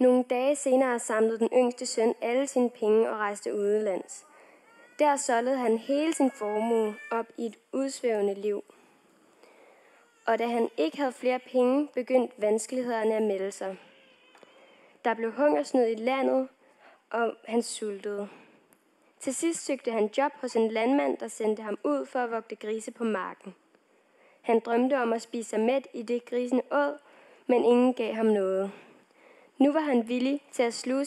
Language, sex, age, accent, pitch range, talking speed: Danish, female, 20-39, native, 220-265 Hz, 165 wpm